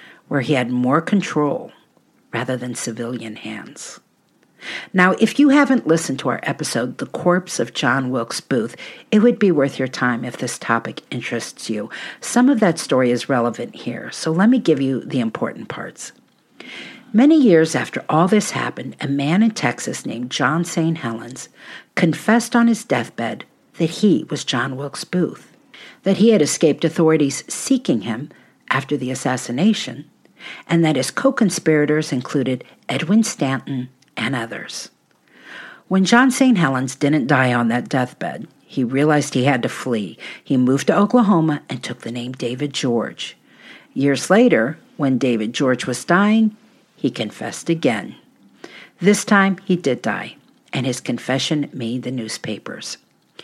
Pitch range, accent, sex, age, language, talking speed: 130-195 Hz, American, female, 50-69, English, 155 wpm